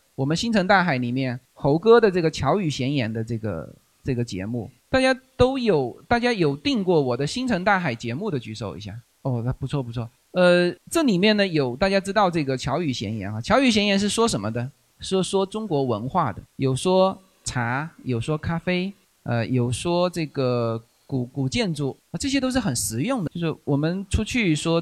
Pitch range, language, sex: 130-205 Hz, Chinese, male